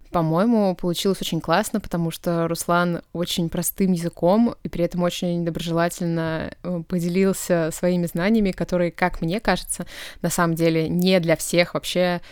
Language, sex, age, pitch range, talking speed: Russian, female, 20-39, 165-185 Hz, 140 wpm